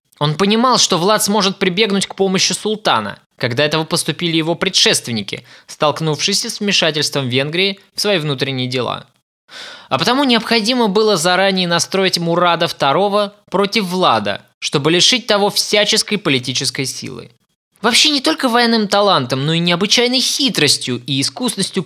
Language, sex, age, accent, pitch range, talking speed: Russian, male, 20-39, native, 150-210 Hz, 135 wpm